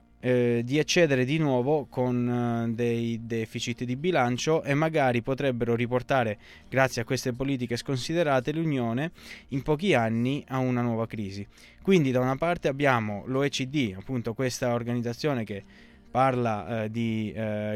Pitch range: 115-135 Hz